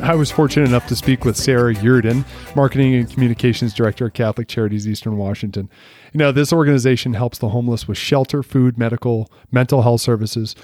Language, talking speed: English, 180 wpm